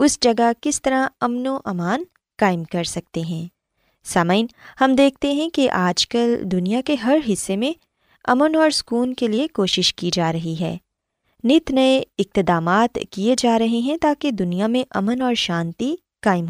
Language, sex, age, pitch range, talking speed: Urdu, female, 20-39, 185-260 Hz, 170 wpm